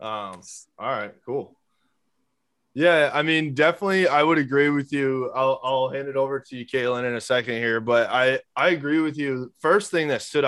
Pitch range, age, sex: 125-150 Hz, 20-39, male